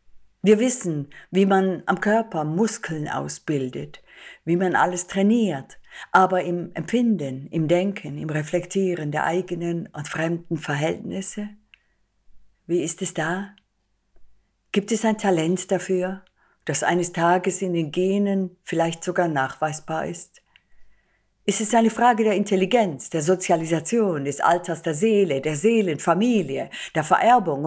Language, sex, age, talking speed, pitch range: German, female, 50-69, 130 wpm, 140-185 Hz